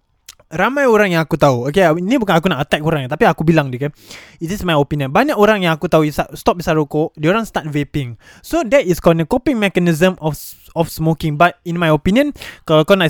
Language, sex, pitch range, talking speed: Malay, male, 150-205 Hz, 235 wpm